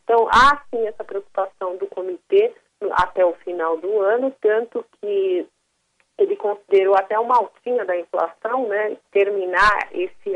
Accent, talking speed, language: Brazilian, 135 wpm, Portuguese